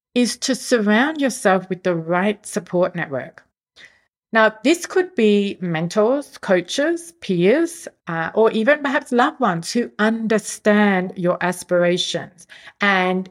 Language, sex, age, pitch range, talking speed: English, female, 40-59, 180-250 Hz, 120 wpm